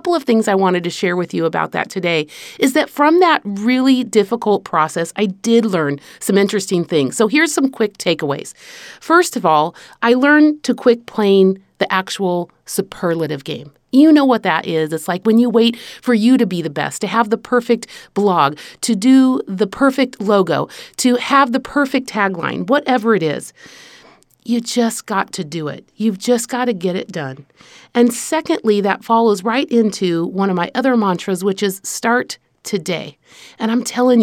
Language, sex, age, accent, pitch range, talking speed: English, female, 40-59, American, 185-245 Hz, 185 wpm